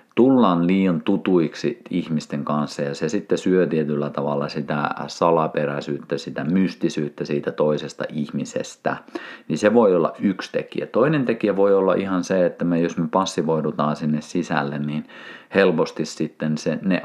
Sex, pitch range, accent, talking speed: male, 75-90 Hz, native, 150 wpm